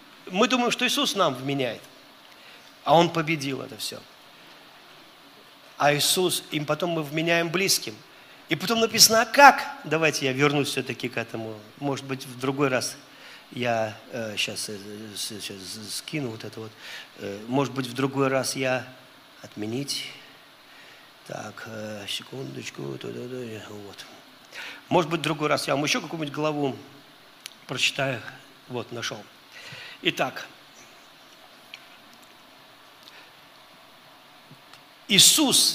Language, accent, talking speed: Russian, native, 110 wpm